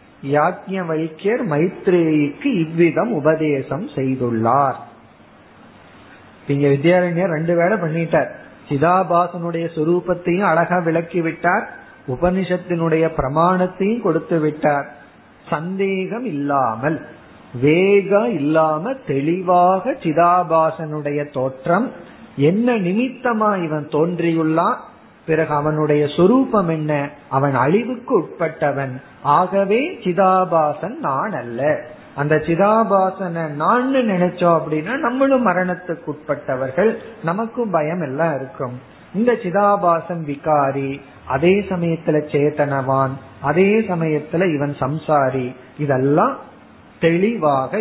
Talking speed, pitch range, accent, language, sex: 60 wpm, 145-185 Hz, native, Tamil, male